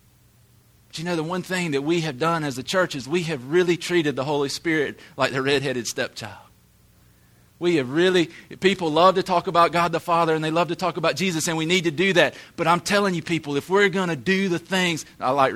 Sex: male